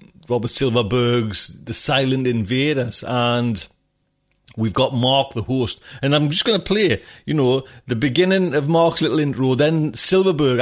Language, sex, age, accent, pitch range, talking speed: English, male, 40-59, British, 110-135 Hz, 155 wpm